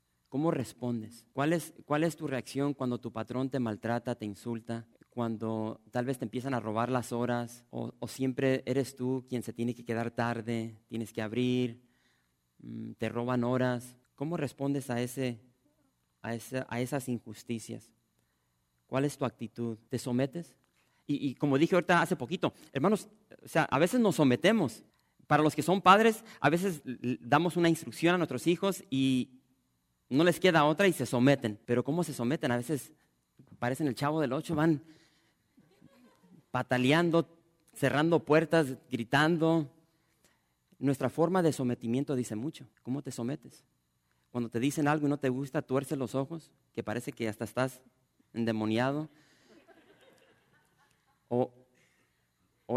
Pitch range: 115-150 Hz